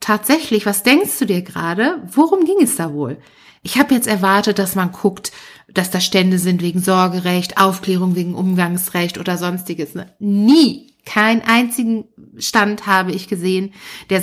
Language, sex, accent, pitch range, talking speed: German, female, German, 185-260 Hz, 160 wpm